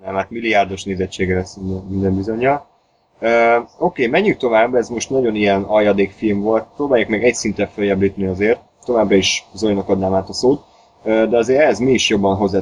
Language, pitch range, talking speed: Hungarian, 95-110 Hz, 180 wpm